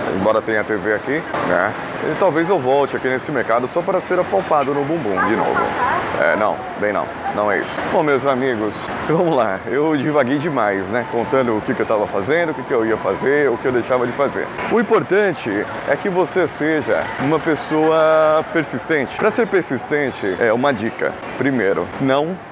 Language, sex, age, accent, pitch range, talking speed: Portuguese, male, 20-39, Brazilian, 130-175 Hz, 190 wpm